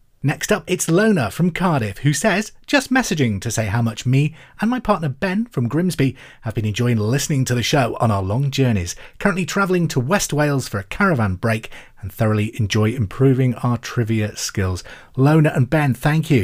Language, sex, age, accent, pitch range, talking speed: English, male, 30-49, British, 110-170 Hz, 195 wpm